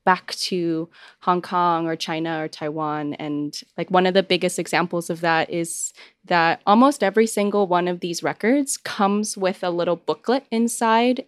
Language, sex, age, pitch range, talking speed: English, female, 20-39, 165-195 Hz, 170 wpm